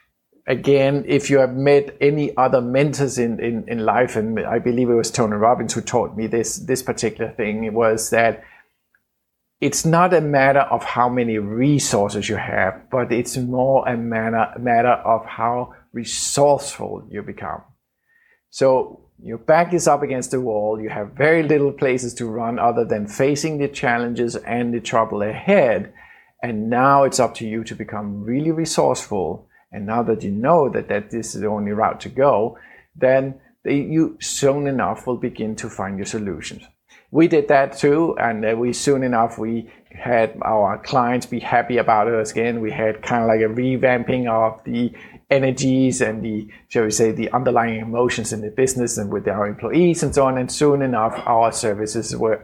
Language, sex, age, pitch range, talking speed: English, male, 50-69, 110-135 Hz, 180 wpm